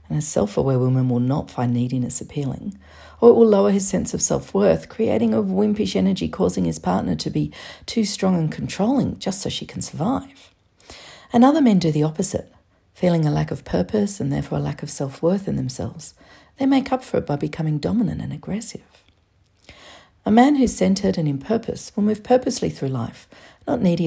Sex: female